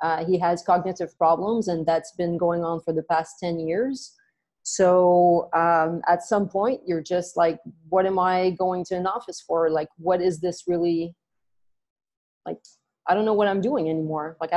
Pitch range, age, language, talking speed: 165-190 Hz, 30-49, English, 185 wpm